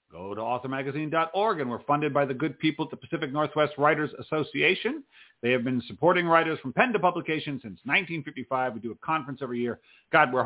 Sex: male